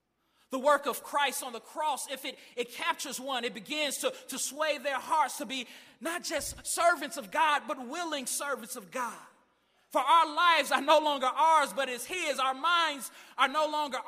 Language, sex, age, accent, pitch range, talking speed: English, male, 20-39, American, 245-310 Hz, 195 wpm